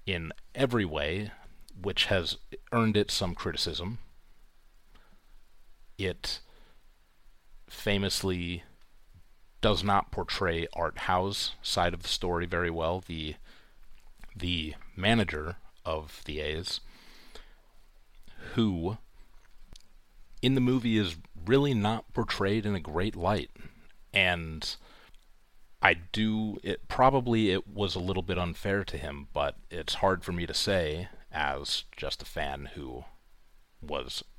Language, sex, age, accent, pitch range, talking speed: English, male, 40-59, American, 85-105 Hz, 115 wpm